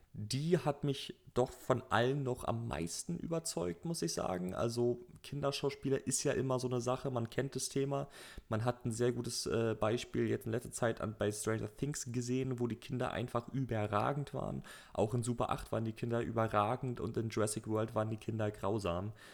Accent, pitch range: German, 100-120 Hz